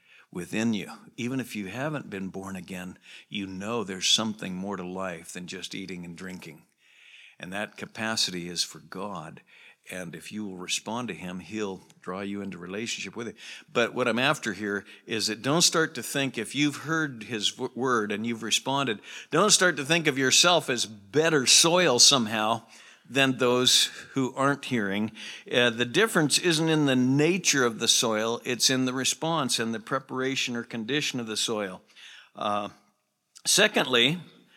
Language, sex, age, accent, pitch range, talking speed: English, male, 60-79, American, 105-145 Hz, 170 wpm